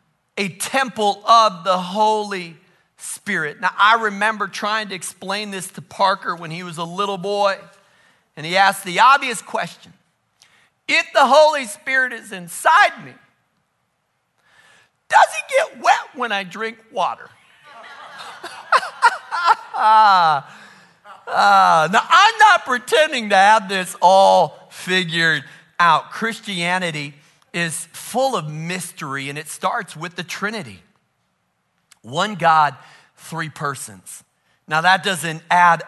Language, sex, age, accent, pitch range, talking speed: English, male, 50-69, American, 160-210 Hz, 120 wpm